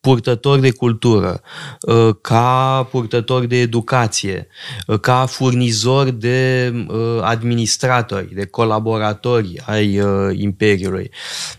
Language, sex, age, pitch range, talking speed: Romanian, male, 20-39, 110-125 Hz, 80 wpm